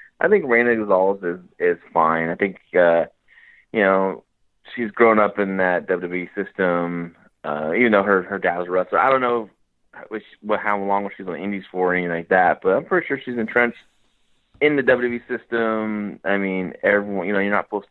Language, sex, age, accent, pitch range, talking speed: English, male, 20-39, American, 90-115 Hz, 210 wpm